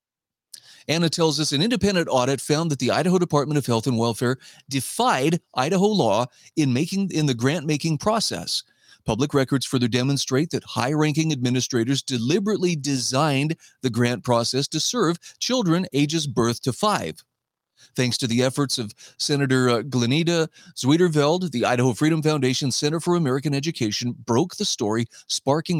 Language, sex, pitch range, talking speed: English, male, 120-150 Hz, 150 wpm